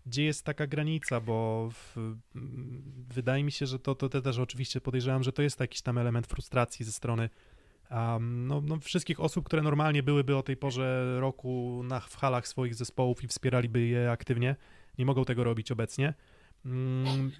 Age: 20-39